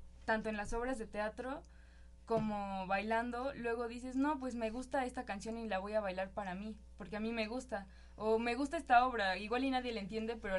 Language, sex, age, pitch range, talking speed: Spanish, female, 20-39, 200-235 Hz, 220 wpm